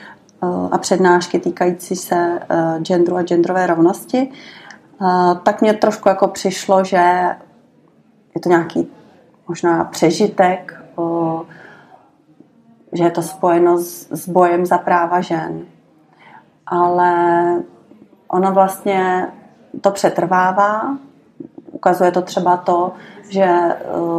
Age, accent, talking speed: 30-49, native, 105 wpm